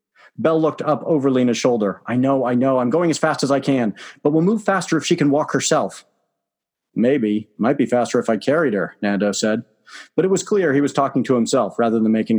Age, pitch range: 40-59, 125-180 Hz